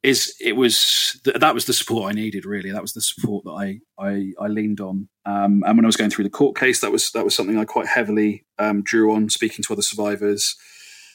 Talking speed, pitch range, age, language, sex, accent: 240 wpm, 105-120 Hz, 30-49, English, male, British